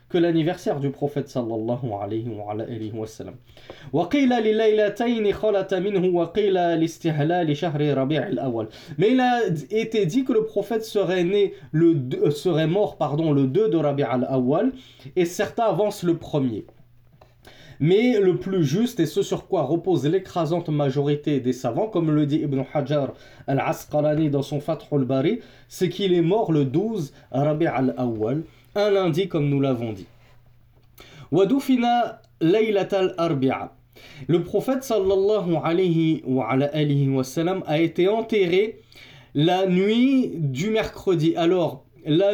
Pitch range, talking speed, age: 140-195 Hz, 130 wpm, 20-39